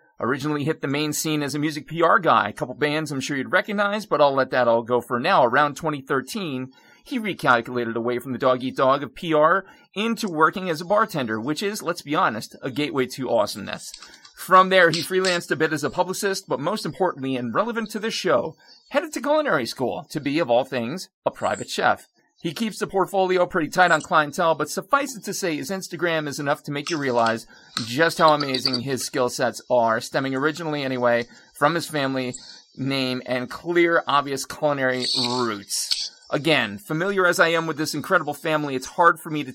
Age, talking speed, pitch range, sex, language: 40-59, 200 wpm, 130-175 Hz, male, English